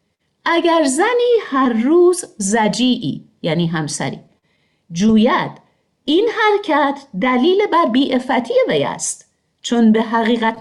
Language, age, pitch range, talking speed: Persian, 50-69, 170-245 Hz, 100 wpm